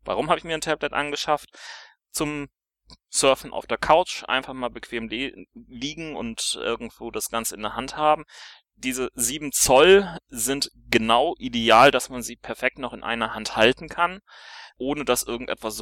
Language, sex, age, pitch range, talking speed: German, male, 30-49, 115-150 Hz, 165 wpm